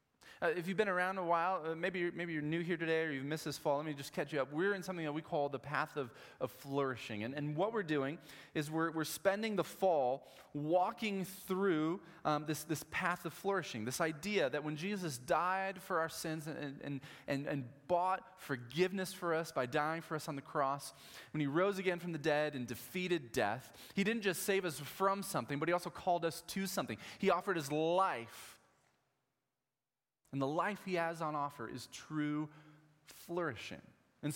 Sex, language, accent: male, English, American